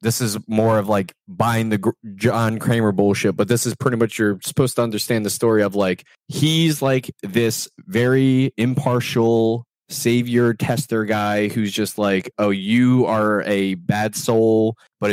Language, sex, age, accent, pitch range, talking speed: English, male, 20-39, American, 100-125 Hz, 165 wpm